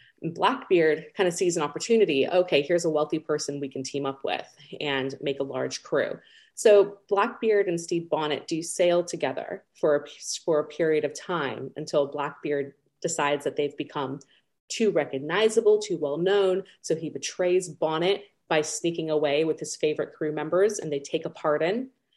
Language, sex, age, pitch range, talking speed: English, female, 30-49, 150-190 Hz, 170 wpm